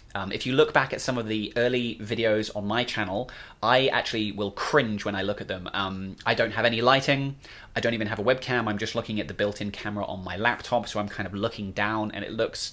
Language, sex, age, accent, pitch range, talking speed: English, male, 20-39, British, 105-125 Hz, 255 wpm